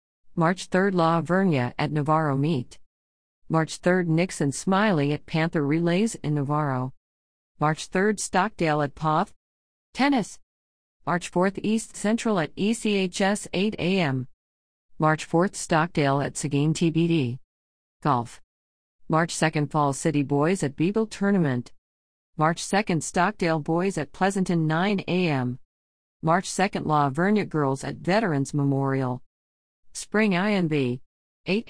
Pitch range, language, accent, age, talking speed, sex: 130-180 Hz, English, American, 40-59, 120 wpm, female